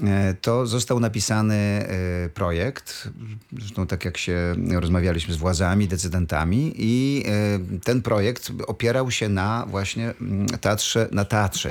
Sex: male